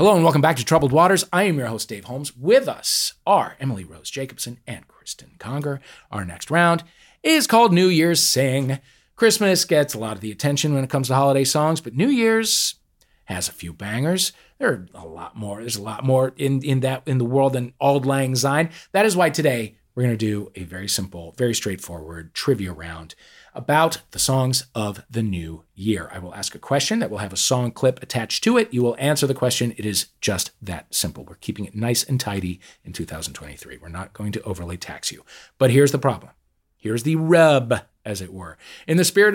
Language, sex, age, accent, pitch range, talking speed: English, male, 40-59, American, 100-155 Hz, 220 wpm